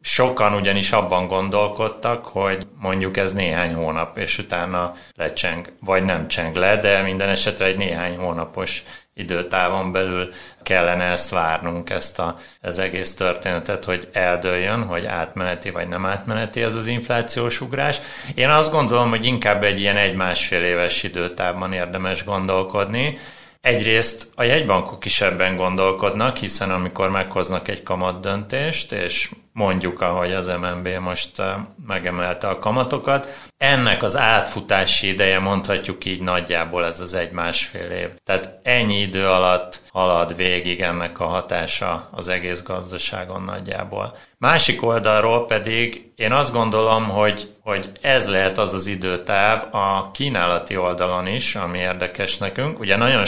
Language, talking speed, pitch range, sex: Hungarian, 135 wpm, 90-105 Hz, male